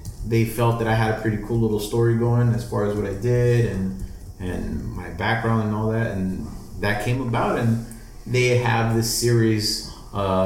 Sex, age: male, 30-49